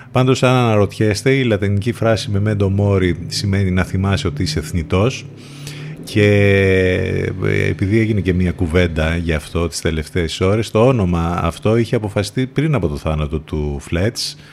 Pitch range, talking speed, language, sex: 85-120 Hz, 155 wpm, Greek, male